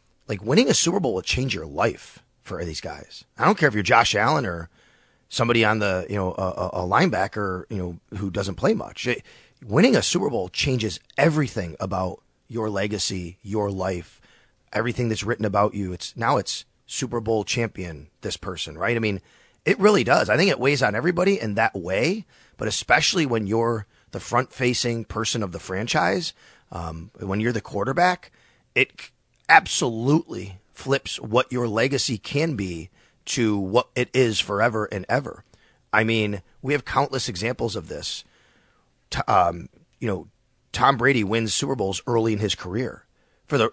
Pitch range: 100-125 Hz